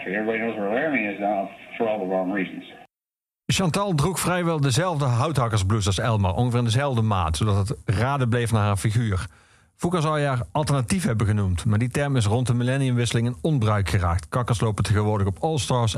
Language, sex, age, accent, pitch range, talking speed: Dutch, male, 50-69, Dutch, 100-125 Hz, 150 wpm